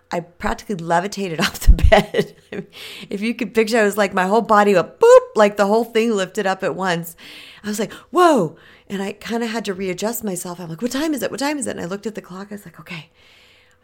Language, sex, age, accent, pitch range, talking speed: English, female, 40-59, American, 160-215 Hz, 255 wpm